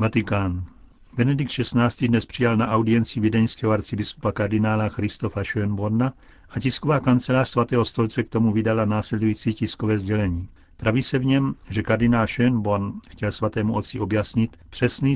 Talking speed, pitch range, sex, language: 145 wpm, 105-120 Hz, male, Czech